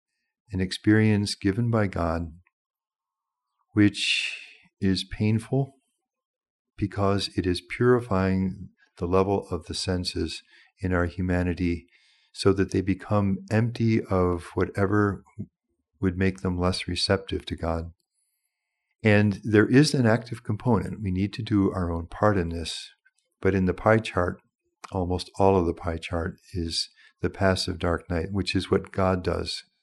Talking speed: 140 wpm